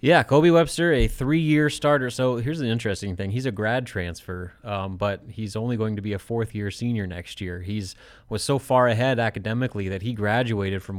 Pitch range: 100-120 Hz